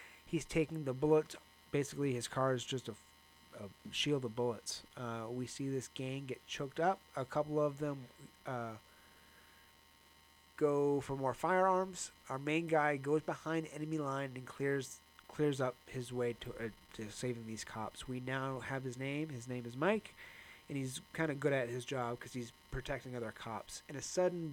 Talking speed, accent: 185 wpm, American